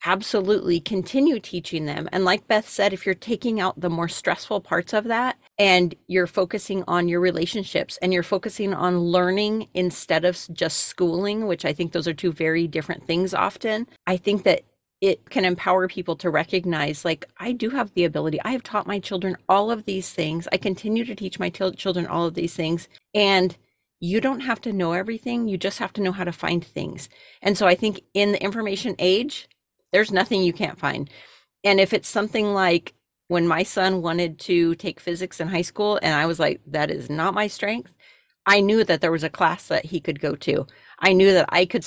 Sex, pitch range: female, 170-210 Hz